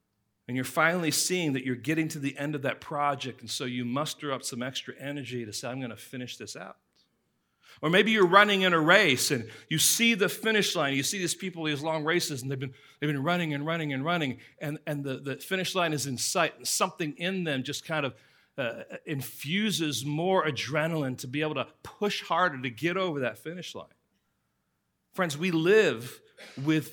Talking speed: 210 wpm